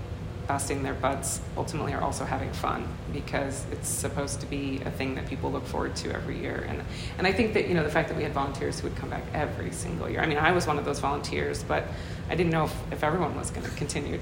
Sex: female